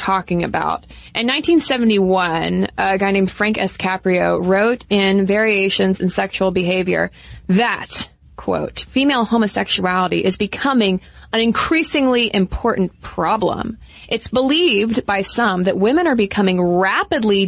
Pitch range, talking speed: 195-255 Hz, 120 wpm